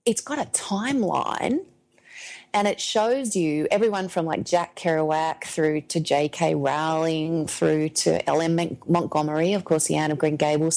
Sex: female